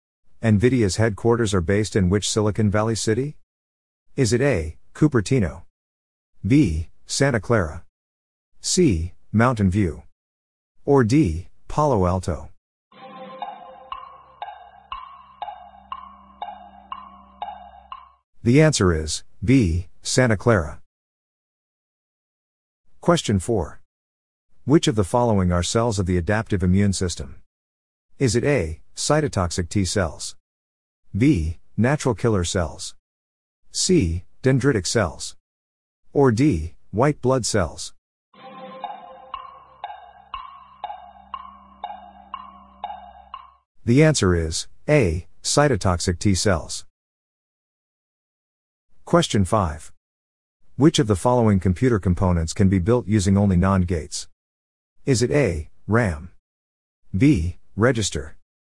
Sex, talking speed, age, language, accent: male, 90 wpm, 50-69, English, American